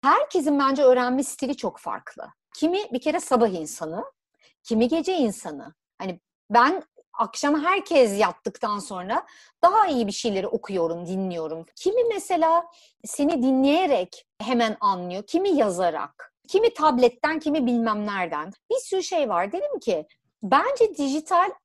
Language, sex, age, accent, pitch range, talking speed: Turkish, female, 60-79, native, 200-305 Hz, 130 wpm